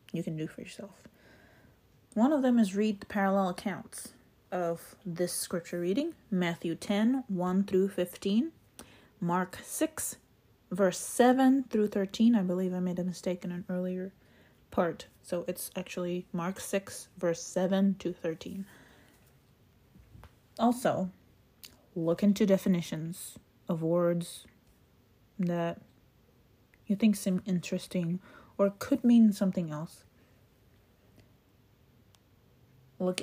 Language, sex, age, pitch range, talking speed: English, female, 30-49, 170-200 Hz, 115 wpm